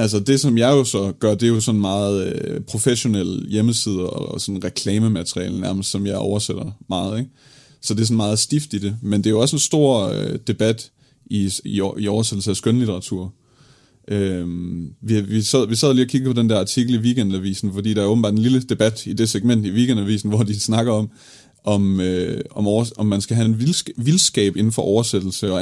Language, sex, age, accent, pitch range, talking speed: Danish, male, 30-49, native, 100-120 Hz, 220 wpm